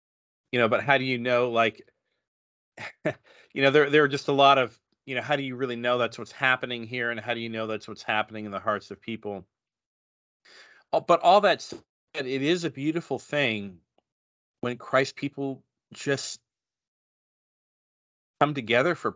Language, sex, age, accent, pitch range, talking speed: English, male, 40-59, American, 110-130 Hz, 175 wpm